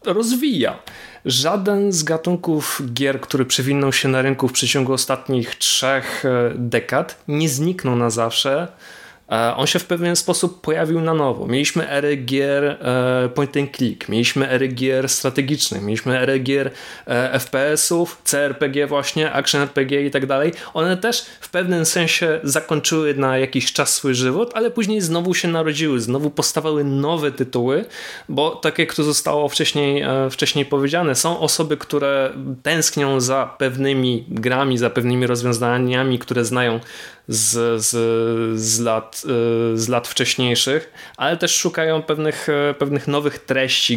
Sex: male